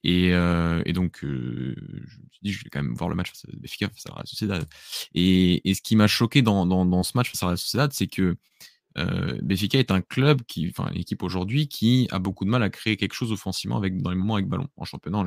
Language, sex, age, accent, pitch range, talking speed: French, male, 20-39, French, 90-115 Hz, 265 wpm